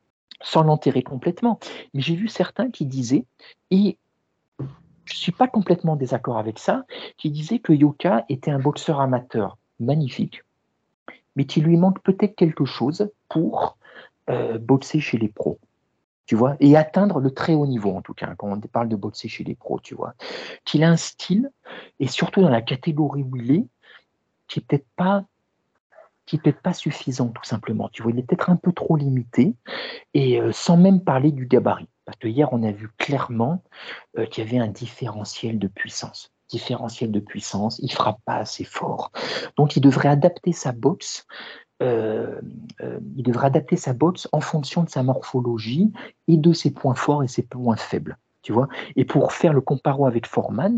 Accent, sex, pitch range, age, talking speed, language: French, male, 120-170 Hz, 50-69, 185 wpm, French